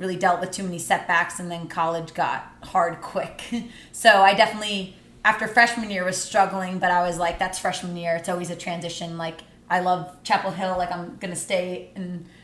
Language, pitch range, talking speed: English, 170-195 Hz, 200 wpm